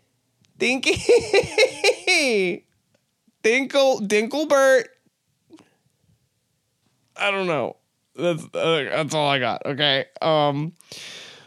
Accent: American